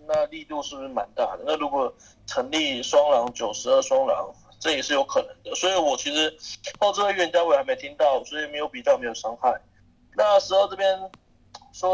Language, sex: Chinese, male